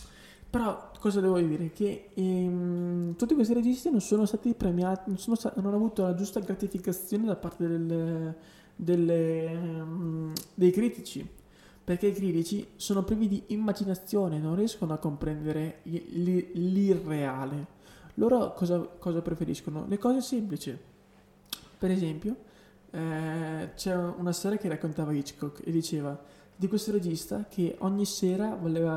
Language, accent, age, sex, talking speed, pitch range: Italian, native, 20-39, male, 125 wpm, 160-205 Hz